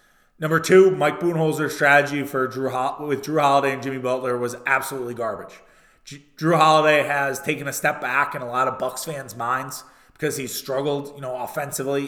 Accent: American